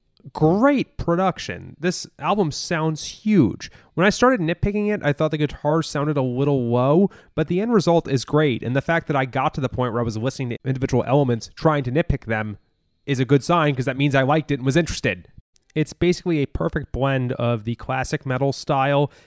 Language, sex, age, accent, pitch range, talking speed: English, male, 20-39, American, 120-155 Hz, 210 wpm